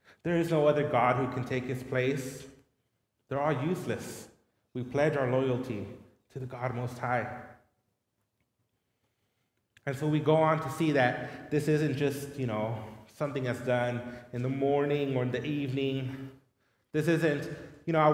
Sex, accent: male, American